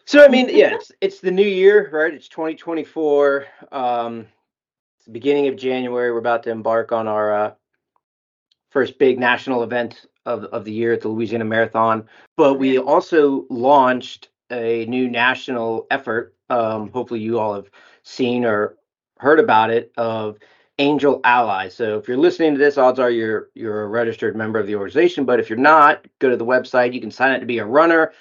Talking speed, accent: 195 wpm, American